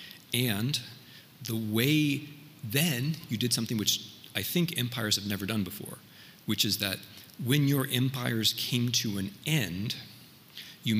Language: German